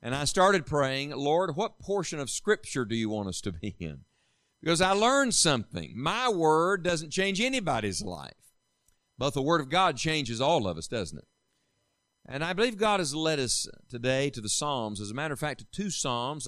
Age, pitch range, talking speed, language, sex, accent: 50-69, 120-165 Hz, 205 wpm, English, male, American